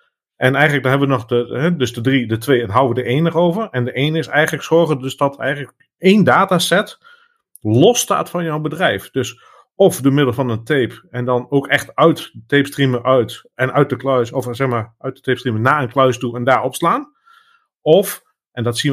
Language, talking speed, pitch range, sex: Dutch, 230 wpm, 125-160 Hz, male